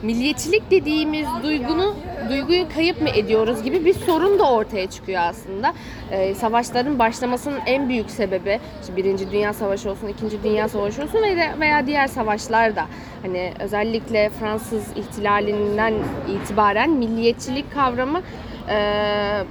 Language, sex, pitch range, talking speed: Turkish, female, 220-300 Hz, 125 wpm